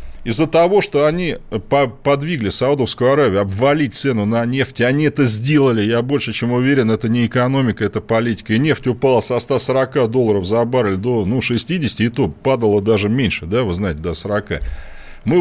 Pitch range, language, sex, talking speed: 105-145 Hz, Russian, male, 175 wpm